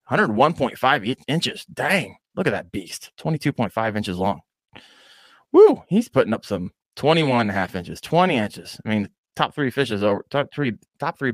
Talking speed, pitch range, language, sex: 170 wpm, 95-125 Hz, English, male